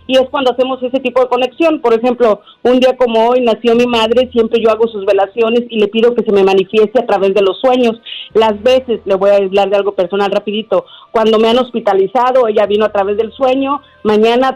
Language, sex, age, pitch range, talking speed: Spanish, female, 40-59, 210-255 Hz, 225 wpm